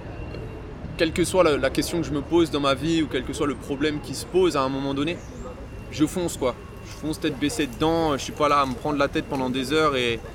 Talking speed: 280 wpm